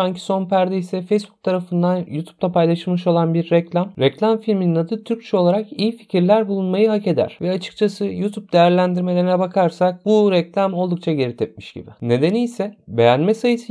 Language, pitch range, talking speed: Turkish, 155-200 Hz, 160 wpm